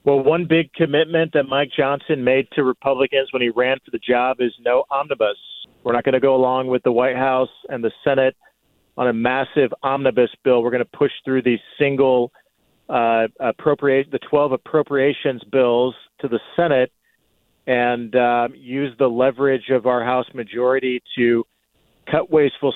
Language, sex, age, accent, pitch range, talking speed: English, male, 40-59, American, 125-145 Hz, 170 wpm